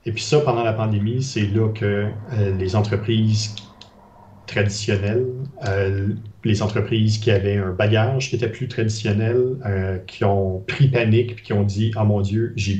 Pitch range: 105-120 Hz